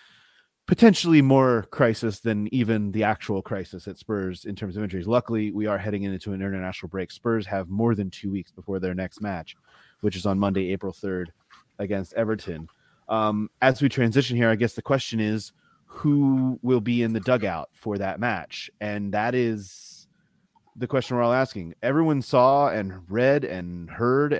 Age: 30-49